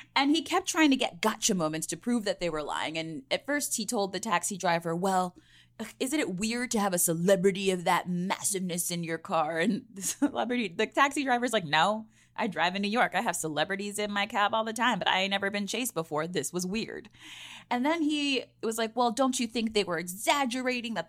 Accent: American